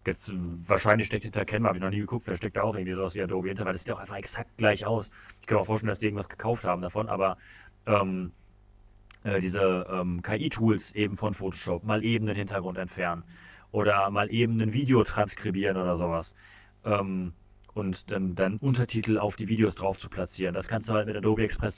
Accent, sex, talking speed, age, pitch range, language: German, male, 215 wpm, 30-49, 95-110 Hz, German